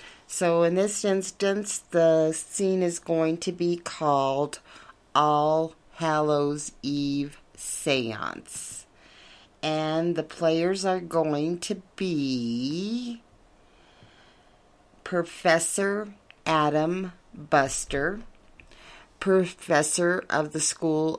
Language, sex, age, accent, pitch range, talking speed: English, female, 40-59, American, 135-170 Hz, 80 wpm